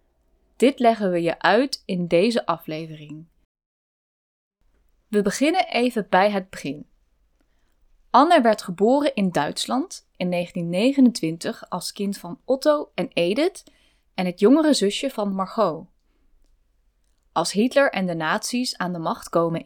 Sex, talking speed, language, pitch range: female, 130 wpm, Dutch, 175-245 Hz